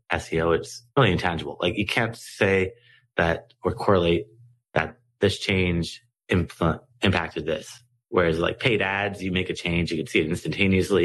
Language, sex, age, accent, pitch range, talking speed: English, male, 30-49, American, 85-110 Hz, 165 wpm